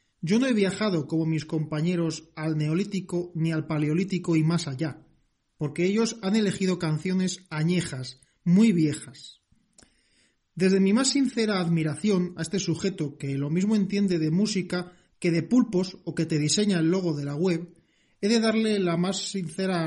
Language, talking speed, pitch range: Spanish, 165 wpm, 155-195 Hz